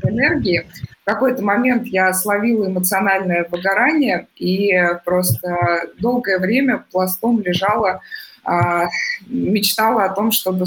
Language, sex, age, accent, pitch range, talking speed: Russian, female, 20-39, native, 180-220 Hz, 100 wpm